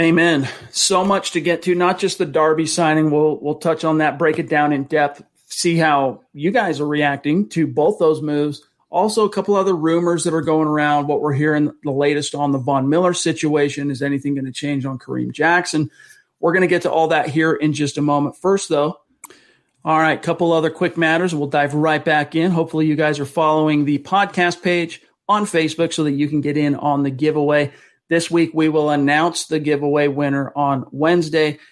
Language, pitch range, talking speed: English, 145-165 Hz, 215 wpm